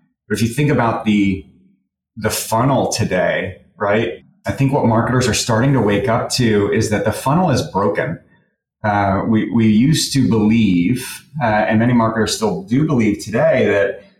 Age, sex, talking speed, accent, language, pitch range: 30-49, male, 175 wpm, American, English, 105-130 Hz